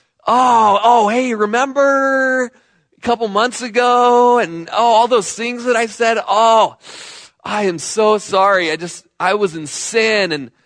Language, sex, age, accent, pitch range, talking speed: English, male, 20-39, American, 140-200 Hz, 160 wpm